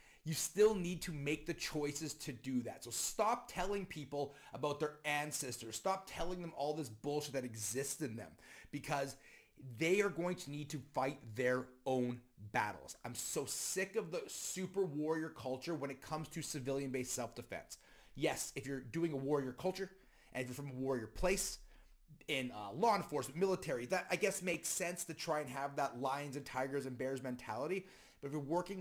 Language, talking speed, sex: English, 190 wpm, male